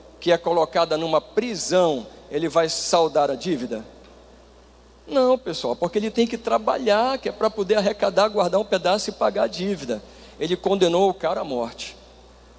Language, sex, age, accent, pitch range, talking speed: Portuguese, male, 50-69, Brazilian, 140-205 Hz, 165 wpm